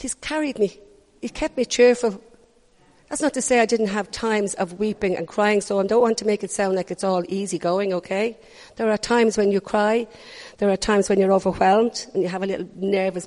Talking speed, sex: 230 wpm, female